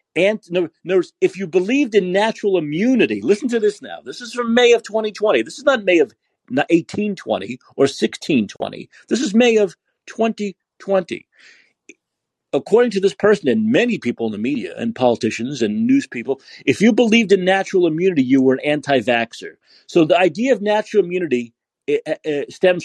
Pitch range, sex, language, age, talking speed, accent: 150-225 Hz, male, English, 40-59, 165 wpm, American